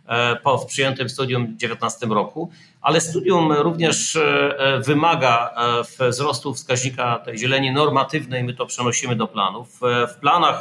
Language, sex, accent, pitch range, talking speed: Polish, male, native, 125-155 Hz, 125 wpm